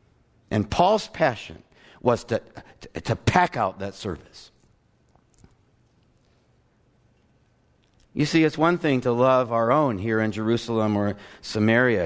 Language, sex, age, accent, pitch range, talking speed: English, male, 60-79, American, 110-150 Hz, 125 wpm